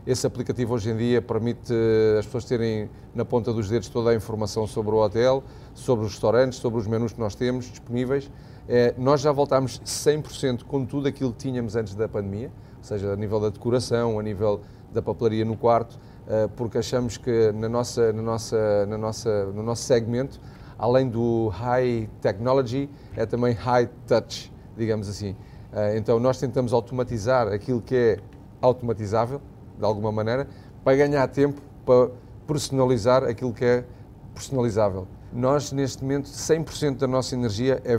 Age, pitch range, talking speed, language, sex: 30-49, 110-125 Hz, 155 wpm, Portuguese, male